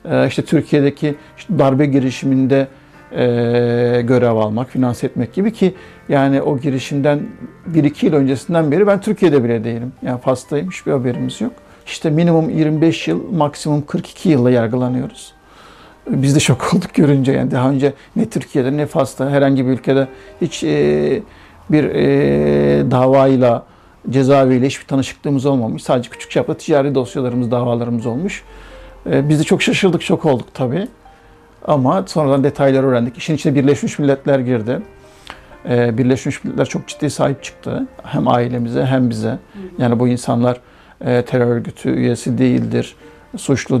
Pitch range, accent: 125-150 Hz, native